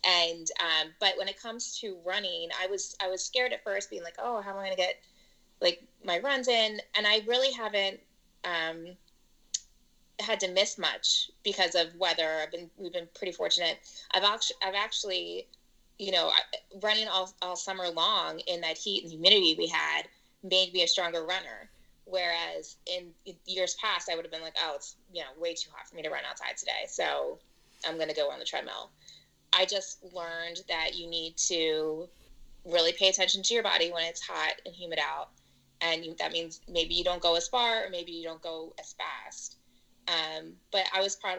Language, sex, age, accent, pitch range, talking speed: English, female, 20-39, American, 165-200 Hz, 200 wpm